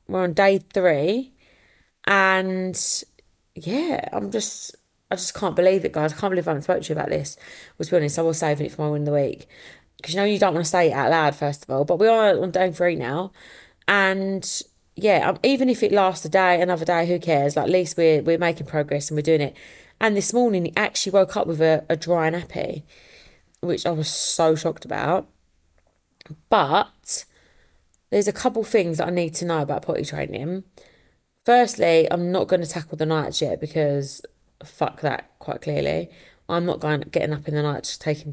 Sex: female